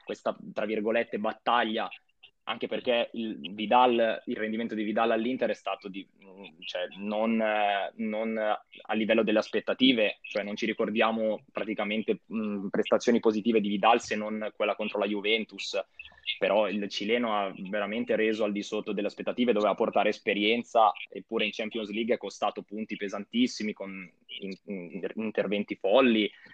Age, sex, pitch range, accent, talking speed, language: 20-39, male, 105-125 Hz, native, 155 wpm, Italian